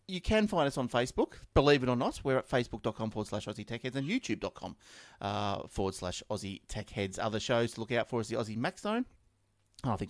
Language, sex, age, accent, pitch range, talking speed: English, male, 30-49, Australian, 115-150 Hz, 230 wpm